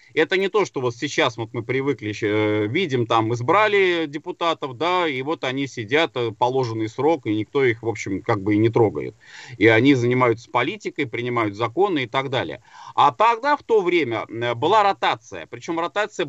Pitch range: 125-180 Hz